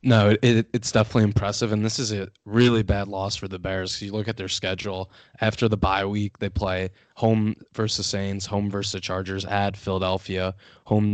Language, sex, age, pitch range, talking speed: English, male, 20-39, 95-105 Hz, 200 wpm